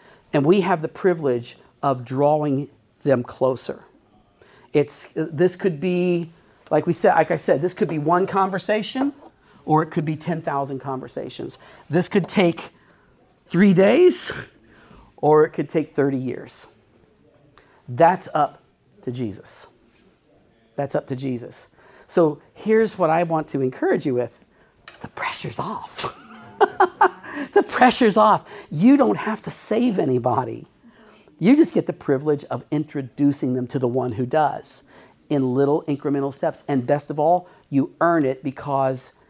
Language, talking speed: English, 145 wpm